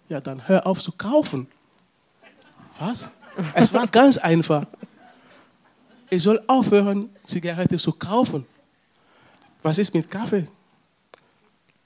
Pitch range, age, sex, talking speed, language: 145-185 Hz, 20-39, male, 105 wpm, German